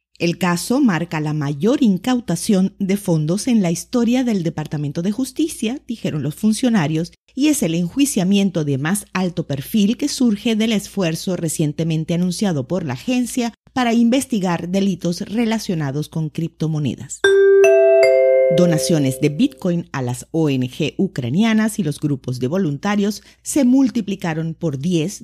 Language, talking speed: Spanish, 135 wpm